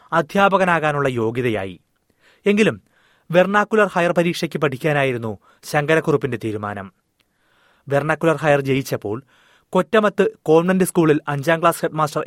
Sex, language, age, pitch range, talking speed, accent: male, Malayalam, 30-49, 125-160 Hz, 90 wpm, native